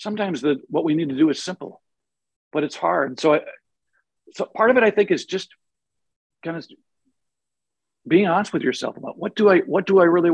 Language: English